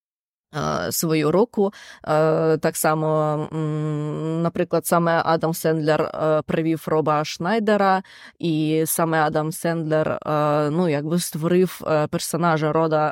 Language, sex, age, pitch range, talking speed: Ukrainian, female, 20-39, 160-195 Hz, 85 wpm